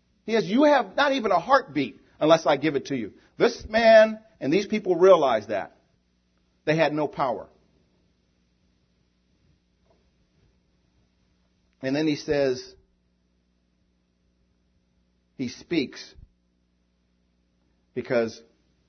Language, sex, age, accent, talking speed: English, male, 50-69, American, 100 wpm